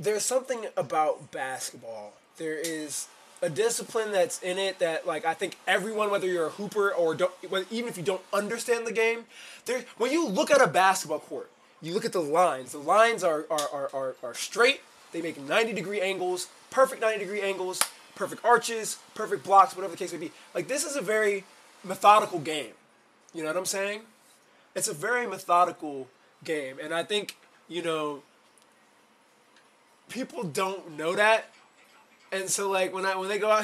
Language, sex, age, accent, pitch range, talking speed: English, male, 20-39, American, 165-225 Hz, 180 wpm